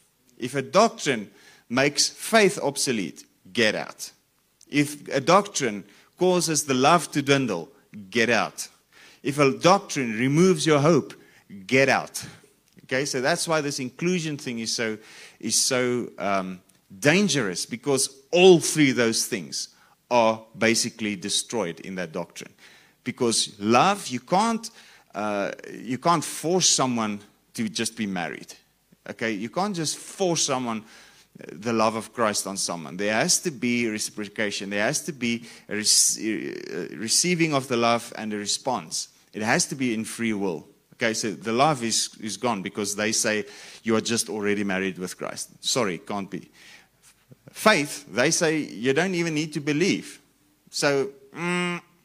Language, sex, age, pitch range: English, male, 30-49, 110-160 Hz